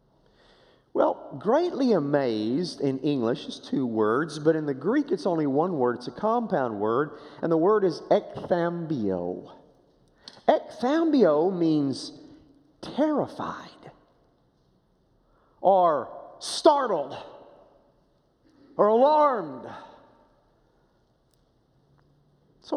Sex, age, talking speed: male, 40-59, 85 wpm